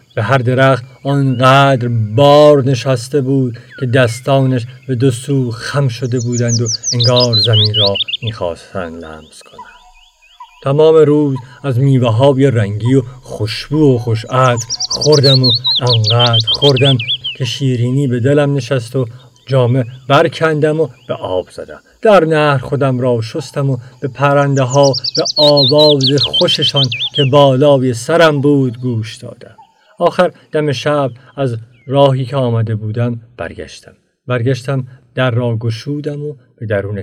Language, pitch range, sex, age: Persian, 120-145 Hz, male, 50-69